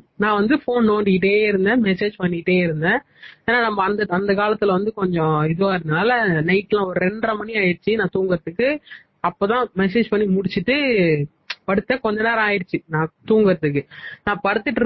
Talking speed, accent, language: 145 wpm, native, Tamil